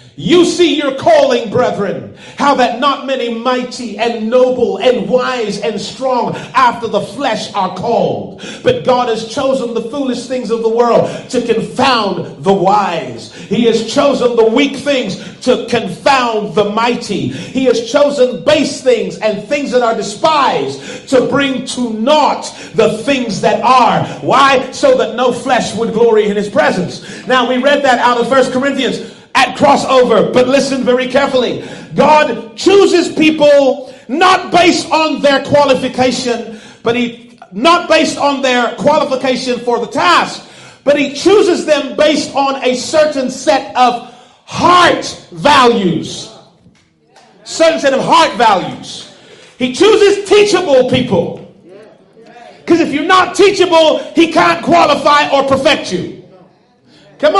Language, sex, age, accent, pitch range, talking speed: English, male, 40-59, American, 230-290 Hz, 145 wpm